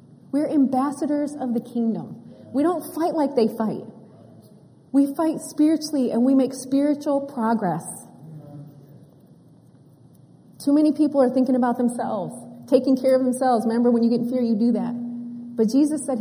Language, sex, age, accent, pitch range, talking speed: English, female, 30-49, American, 195-245 Hz, 155 wpm